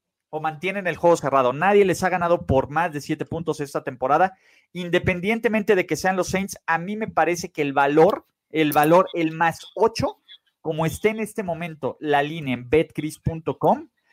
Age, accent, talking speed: 40-59, Mexican, 185 wpm